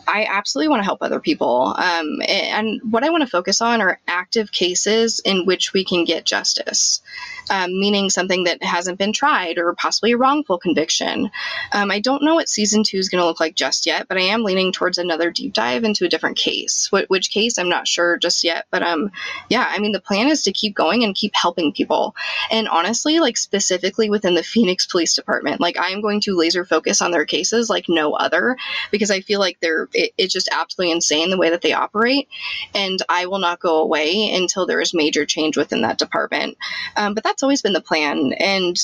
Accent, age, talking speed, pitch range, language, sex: American, 20-39, 220 wpm, 180-225 Hz, English, female